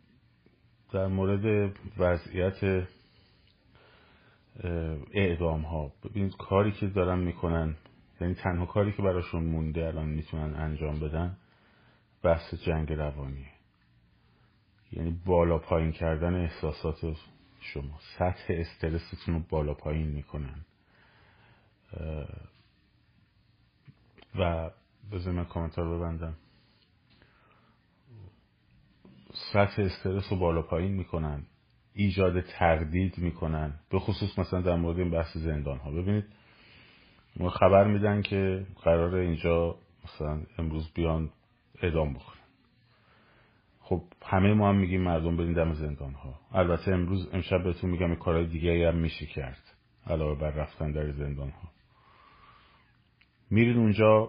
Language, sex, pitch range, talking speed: Persian, male, 80-100 Hz, 105 wpm